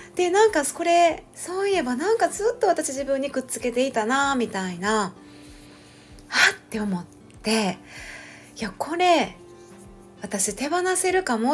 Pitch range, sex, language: 190-300 Hz, female, Japanese